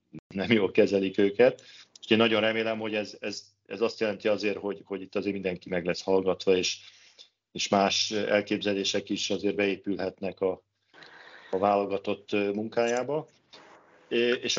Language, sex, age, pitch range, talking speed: Hungarian, male, 40-59, 95-110 Hz, 145 wpm